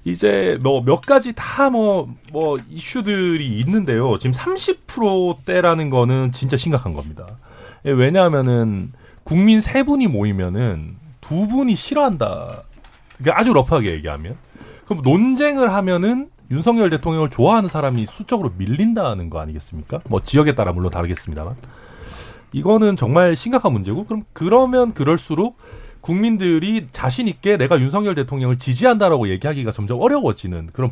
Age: 40-59